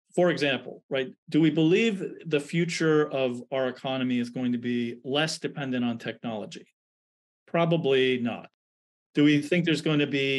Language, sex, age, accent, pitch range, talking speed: English, male, 40-59, American, 125-155 Hz, 160 wpm